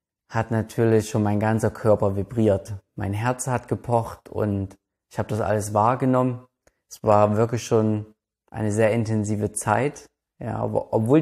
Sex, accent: male, German